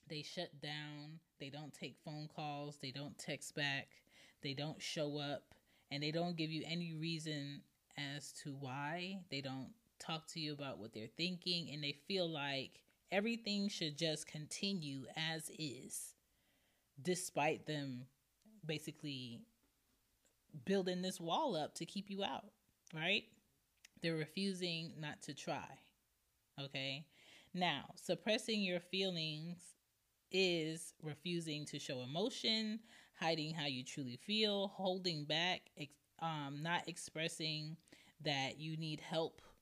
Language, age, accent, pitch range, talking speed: English, 20-39, American, 140-175 Hz, 130 wpm